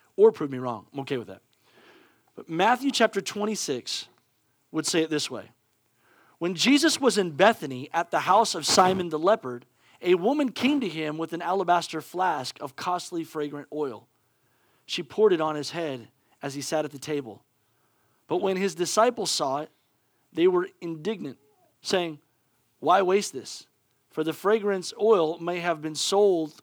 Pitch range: 160-220 Hz